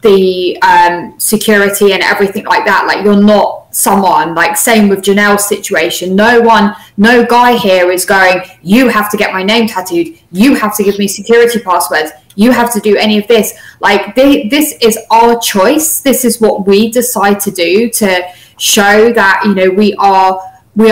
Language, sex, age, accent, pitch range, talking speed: English, female, 20-39, British, 185-225 Hz, 185 wpm